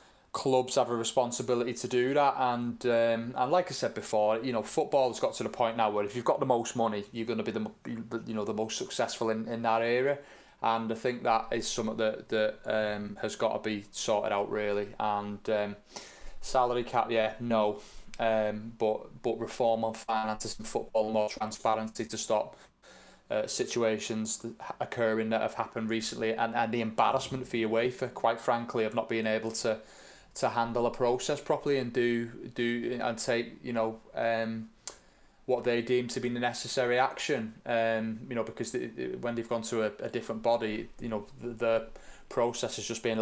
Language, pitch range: English, 110-125 Hz